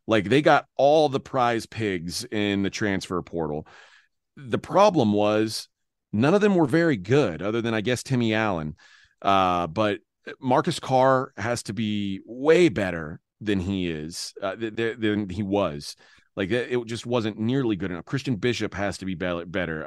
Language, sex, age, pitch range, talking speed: English, male, 30-49, 95-125 Hz, 175 wpm